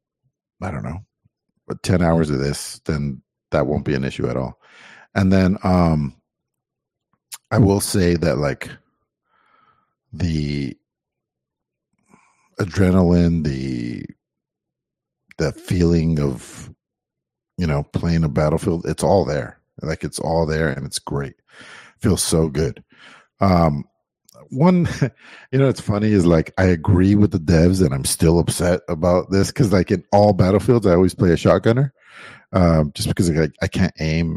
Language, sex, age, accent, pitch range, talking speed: English, male, 50-69, American, 80-100 Hz, 145 wpm